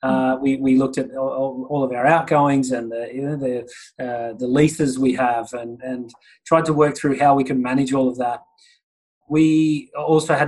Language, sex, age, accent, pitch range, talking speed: English, male, 30-49, Australian, 130-150 Hz, 205 wpm